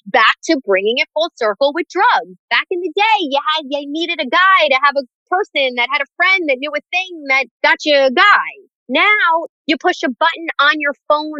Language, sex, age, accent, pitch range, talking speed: English, female, 30-49, American, 220-310 Hz, 225 wpm